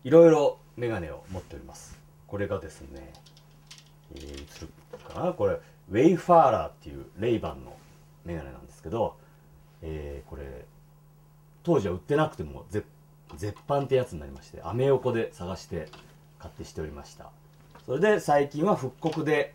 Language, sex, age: Japanese, male, 40-59